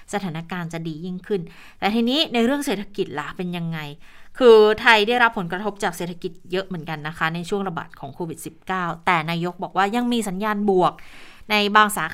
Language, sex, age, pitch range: Thai, female, 20-39, 185-240 Hz